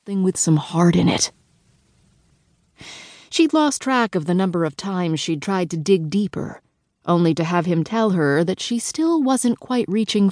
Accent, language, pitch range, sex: American, English, 165-220 Hz, female